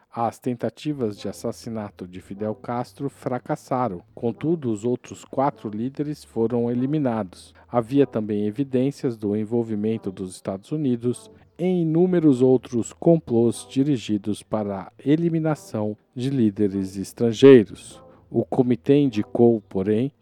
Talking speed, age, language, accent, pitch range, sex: 115 wpm, 50-69, Portuguese, Brazilian, 105-135 Hz, male